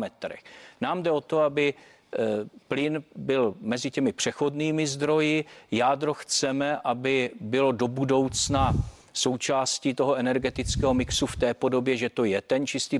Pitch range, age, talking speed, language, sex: 125-140 Hz, 40-59, 135 wpm, Czech, male